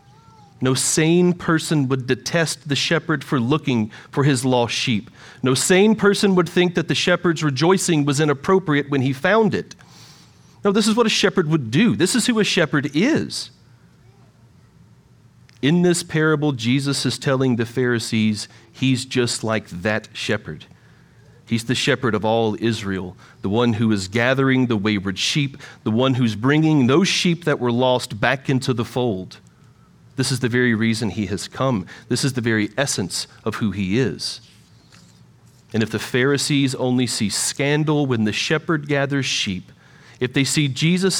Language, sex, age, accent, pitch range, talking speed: English, male, 40-59, American, 120-160 Hz, 165 wpm